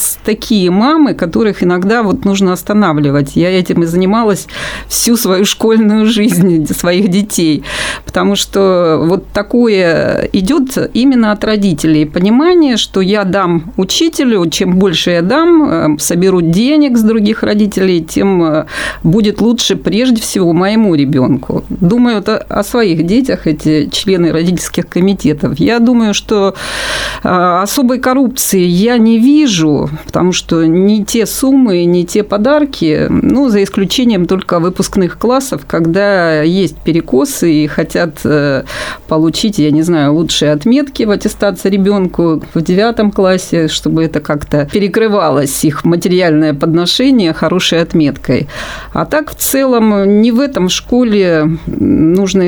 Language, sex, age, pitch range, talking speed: Russian, female, 40-59, 165-220 Hz, 125 wpm